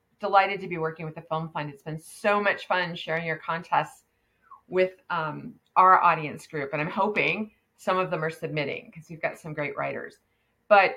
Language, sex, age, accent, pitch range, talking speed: English, female, 30-49, American, 165-200 Hz, 200 wpm